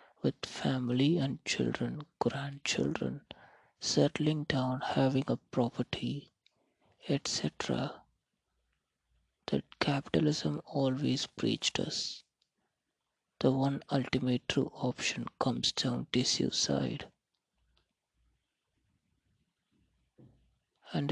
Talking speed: 75 wpm